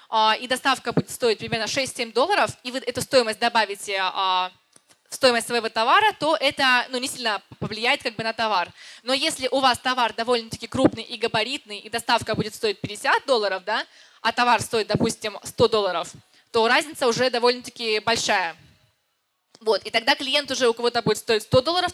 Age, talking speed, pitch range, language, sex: 20-39, 170 wpm, 215-265 Hz, Russian, female